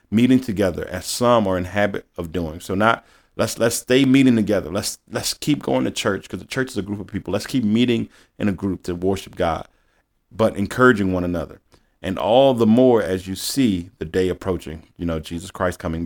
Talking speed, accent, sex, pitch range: 215 wpm, American, male, 90-110 Hz